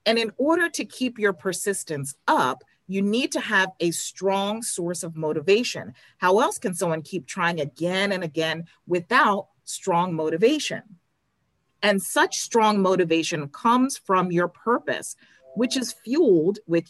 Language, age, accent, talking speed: English, 40-59, American, 145 wpm